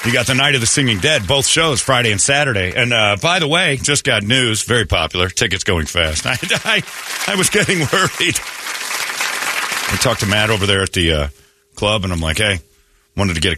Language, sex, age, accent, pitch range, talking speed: English, male, 40-59, American, 90-120 Hz, 220 wpm